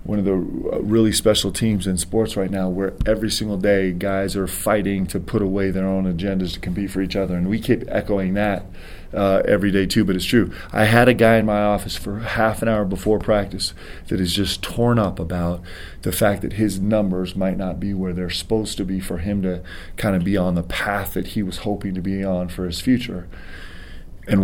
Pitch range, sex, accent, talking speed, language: 95-120 Hz, male, American, 225 wpm, English